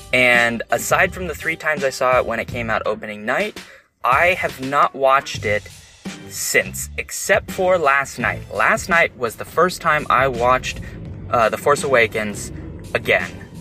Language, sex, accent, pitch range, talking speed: English, male, American, 105-145 Hz, 170 wpm